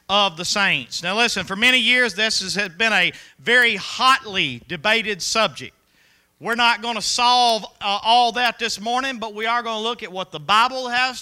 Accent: American